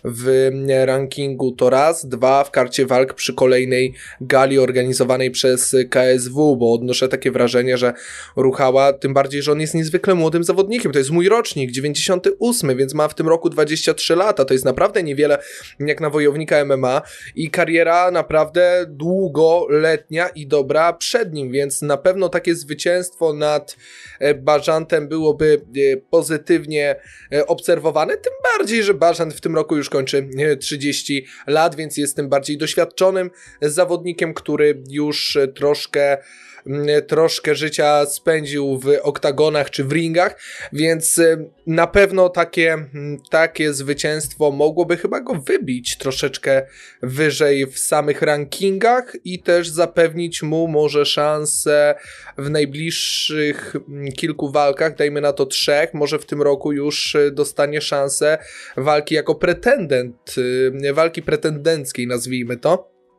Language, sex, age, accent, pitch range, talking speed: Polish, male, 20-39, native, 140-165 Hz, 130 wpm